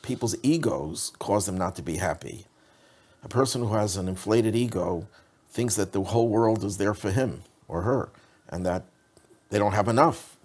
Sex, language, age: male, English, 50-69